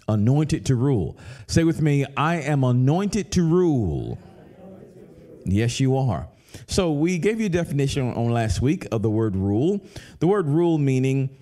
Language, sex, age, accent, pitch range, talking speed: English, male, 50-69, American, 120-165 Hz, 165 wpm